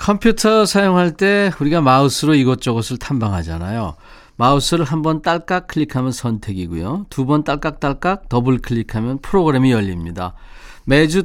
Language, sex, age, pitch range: Korean, male, 40-59, 110-155 Hz